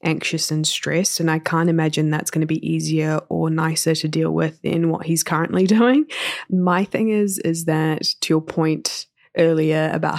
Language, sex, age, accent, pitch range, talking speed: English, female, 20-39, Australian, 155-190 Hz, 190 wpm